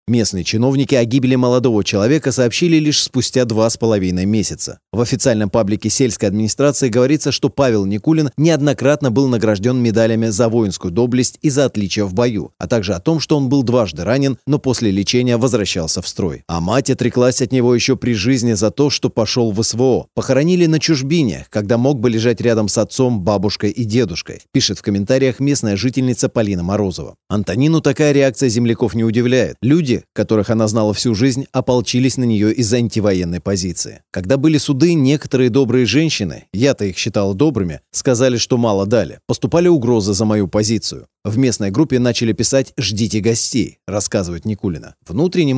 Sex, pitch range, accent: male, 105-135 Hz, native